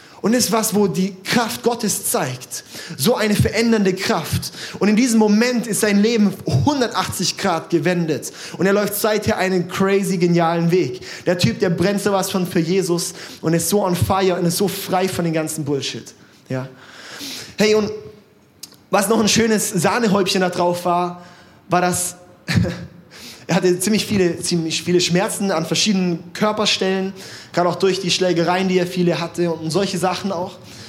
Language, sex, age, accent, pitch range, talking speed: German, male, 20-39, German, 170-195 Hz, 170 wpm